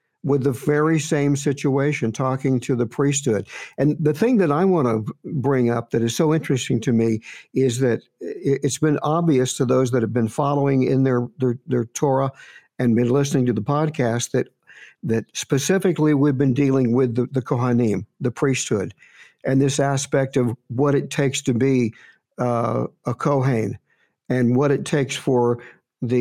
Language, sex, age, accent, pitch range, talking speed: English, male, 60-79, American, 125-150 Hz, 175 wpm